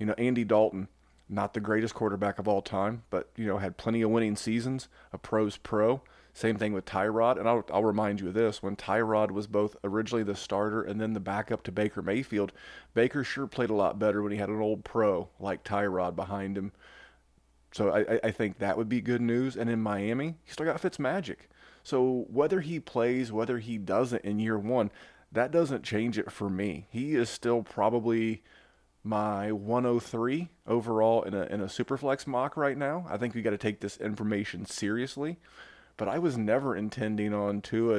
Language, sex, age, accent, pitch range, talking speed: English, male, 30-49, American, 105-120 Hz, 200 wpm